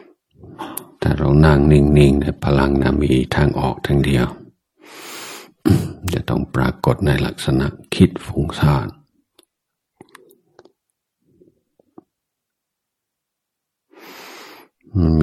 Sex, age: male, 60-79